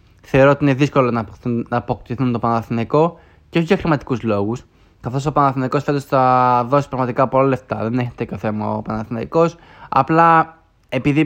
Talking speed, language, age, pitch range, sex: 160 wpm, Greek, 20-39, 120-145 Hz, male